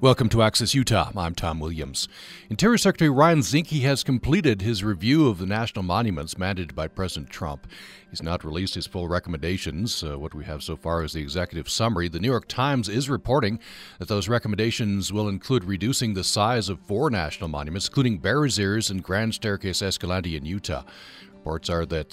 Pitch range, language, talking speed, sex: 85-115 Hz, English, 185 wpm, male